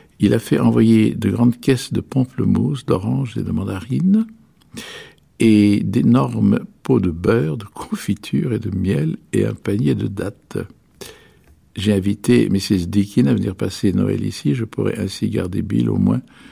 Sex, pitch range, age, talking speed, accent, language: male, 95-120 Hz, 60-79, 165 wpm, French, French